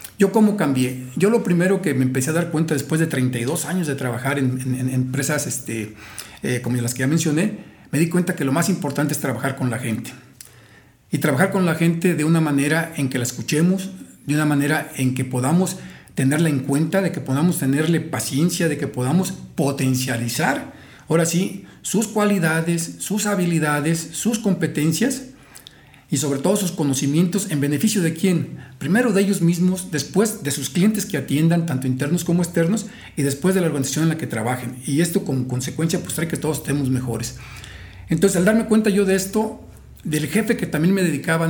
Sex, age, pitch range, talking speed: male, 50-69, 135-175 Hz, 195 wpm